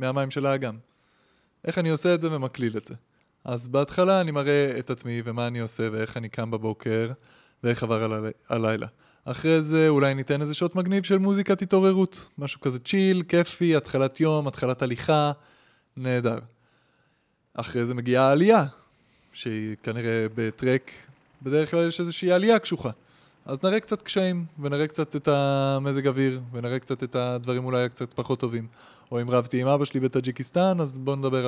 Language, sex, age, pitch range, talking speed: Hebrew, male, 20-39, 115-150 Hz, 170 wpm